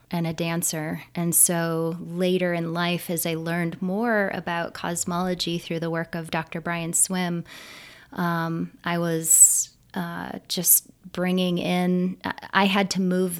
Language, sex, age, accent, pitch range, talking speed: English, female, 20-39, American, 165-185 Hz, 145 wpm